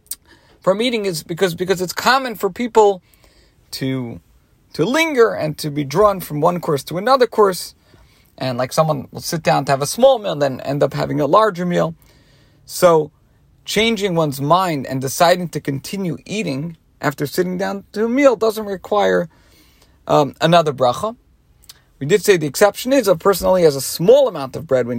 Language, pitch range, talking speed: English, 135-205 Hz, 185 wpm